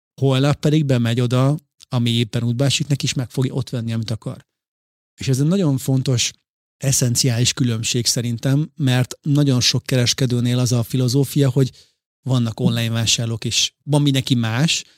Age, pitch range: 30-49, 120-135 Hz